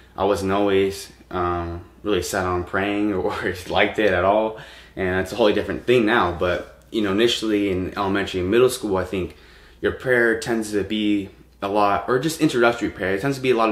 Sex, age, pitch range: male, 20-39, 95-105 Hz